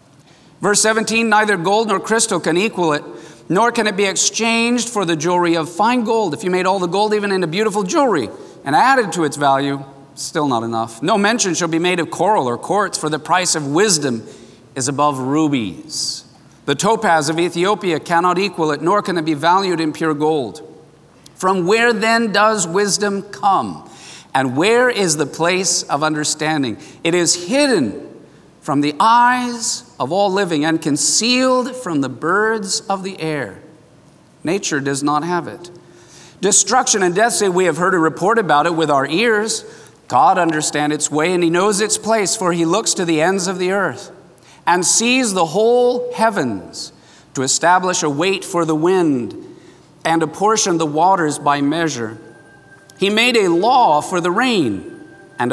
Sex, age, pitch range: male, 40-59, 155-210 Hz